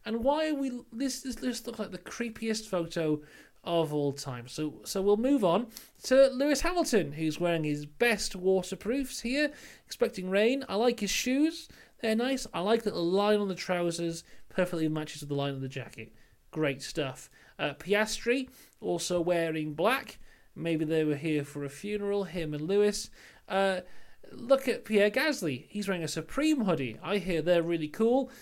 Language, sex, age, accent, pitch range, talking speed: English, male, 30-49, British, 160-235 Hz, 175 wpm